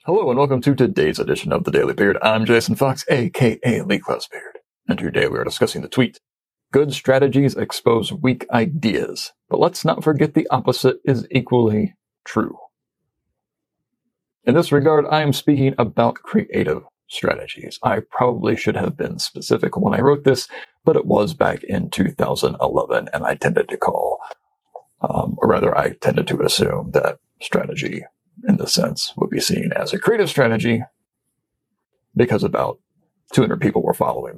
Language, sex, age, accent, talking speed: English, male, 40-59, American, 160 wpm